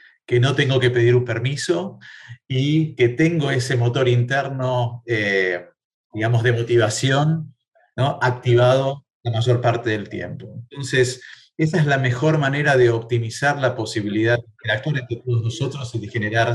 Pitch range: 115-130 Hz